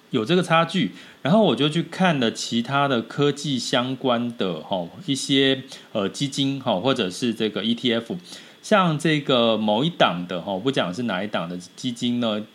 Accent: native